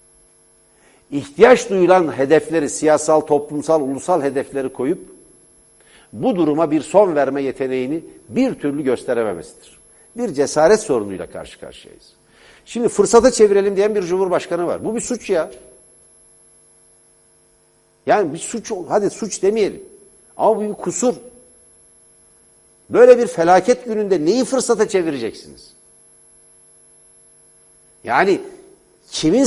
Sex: male